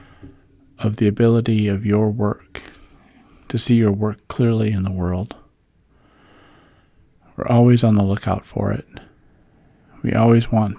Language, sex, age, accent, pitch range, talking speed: English, male, 40-59, American, 95-115 Hz, 135 wpm